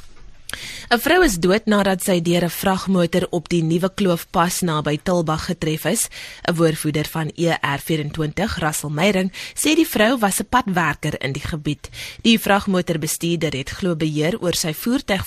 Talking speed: 150 wpm